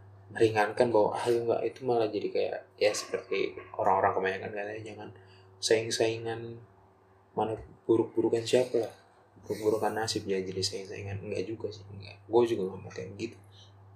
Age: 20-39